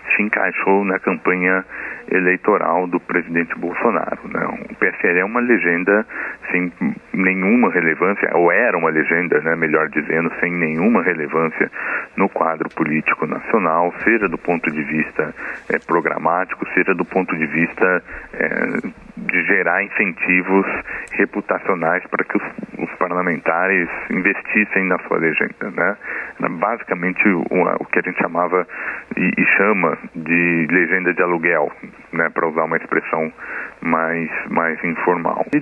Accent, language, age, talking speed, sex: Brazilian, Portuguese, 40-59, 135 wpm, male